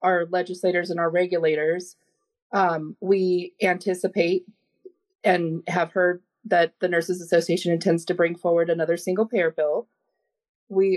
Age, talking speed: 20-39, 125 wpm